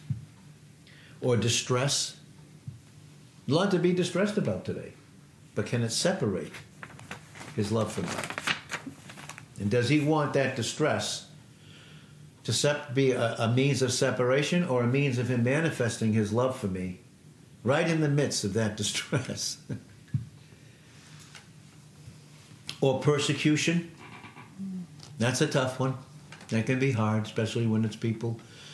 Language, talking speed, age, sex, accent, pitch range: English, 125 wpm, 60-79, male, American, 110-150 Hz